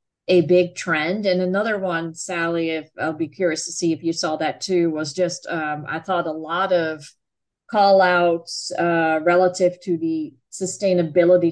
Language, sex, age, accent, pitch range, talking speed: English, female, 40-59, American, 155-175 Hz, 170 wpm